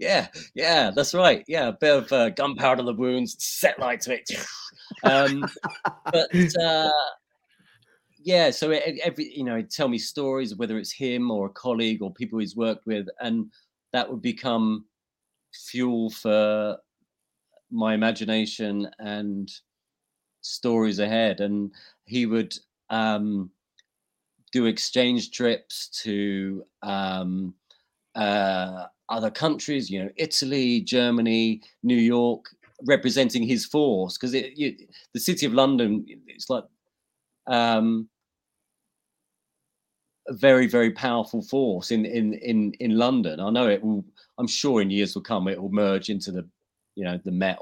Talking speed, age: 135 wpm, 40-59